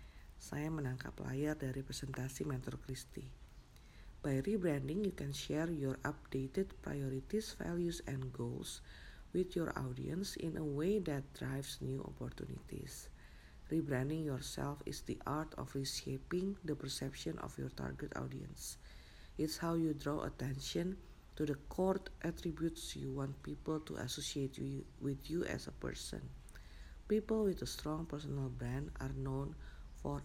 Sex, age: female, 50-69